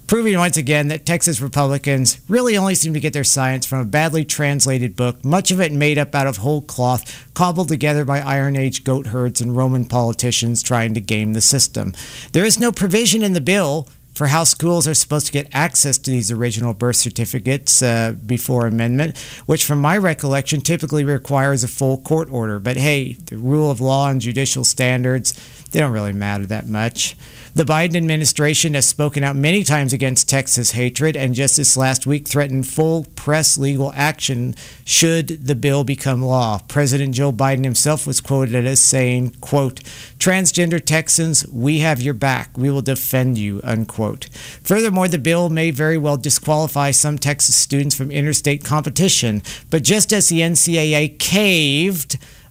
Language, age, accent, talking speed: English, 50-69, American, 175 wpm